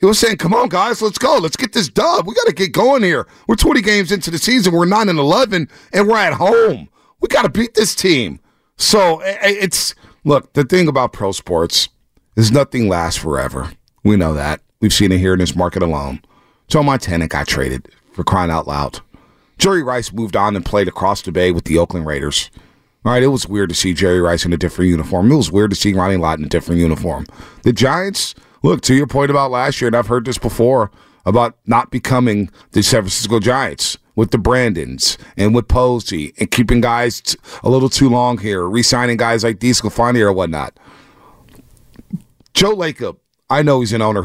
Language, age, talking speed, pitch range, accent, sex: English, 40-59, 205 wpm, 95-135 Hz, American, male